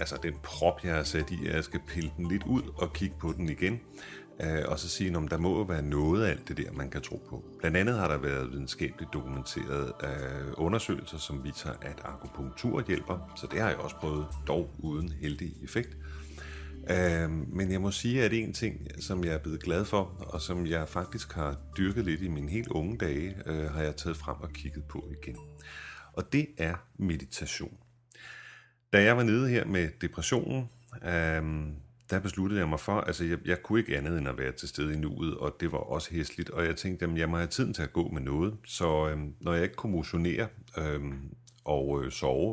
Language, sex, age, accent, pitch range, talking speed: Danish, male, 30-49, native, 75-95 Hz, 210 wpm